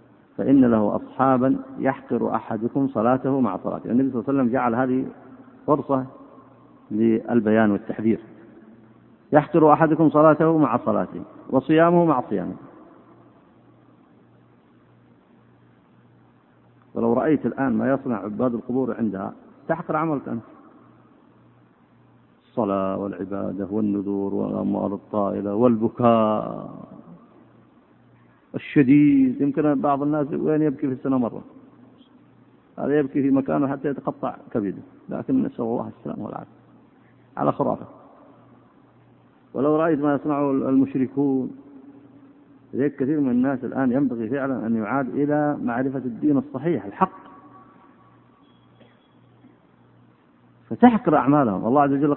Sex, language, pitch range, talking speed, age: male, Arabic, 105-145 Hz, 105 wpm, 50-69